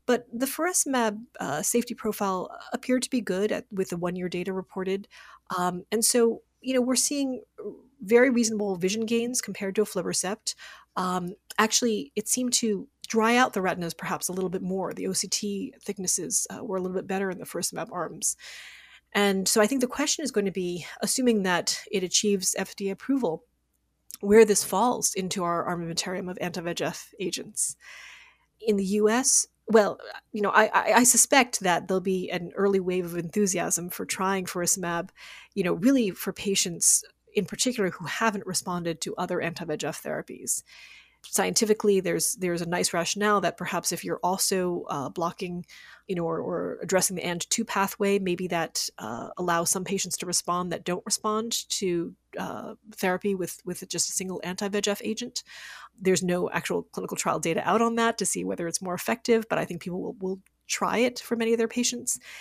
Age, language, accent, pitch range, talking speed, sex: 30-49, English, American, 180-220 Hz, 180 wpm, female